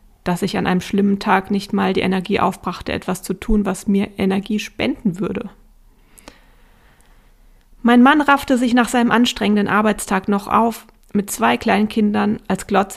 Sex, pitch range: female, 190-220 Hz